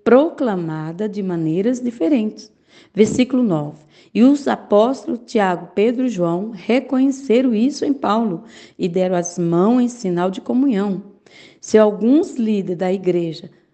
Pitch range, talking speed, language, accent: 180-240 Hz, 130 wpm, Portuguese, Brazilian